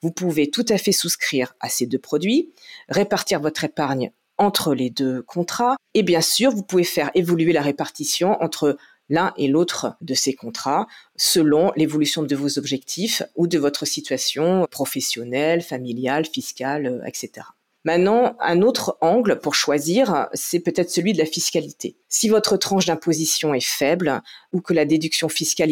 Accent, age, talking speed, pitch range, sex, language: French, 40-59, 160 wpm, 140-175 Hz, female, French